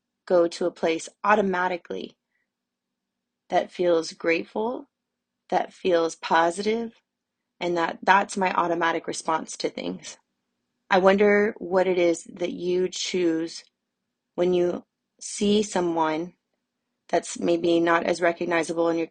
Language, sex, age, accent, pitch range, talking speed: English, female, 20-39, American, 175-215 Hz, 120 wpm